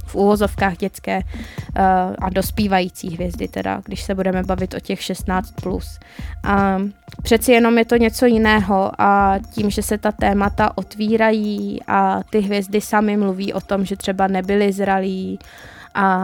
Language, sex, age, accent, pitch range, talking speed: Czech, female, 20-39, native, 185-205 Hz, 150 wpm